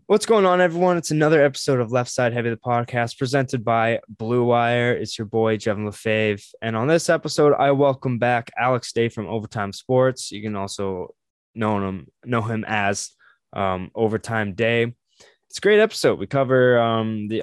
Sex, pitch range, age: male, 105-130 Hz, 20-39